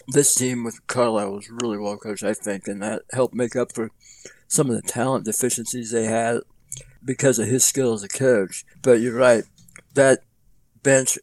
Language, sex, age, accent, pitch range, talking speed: English, male, 60-79, American, 115-130 Hz, 185 wpm